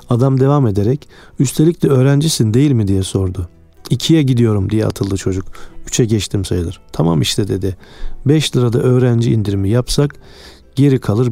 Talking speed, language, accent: 150 wpm, Turkish, native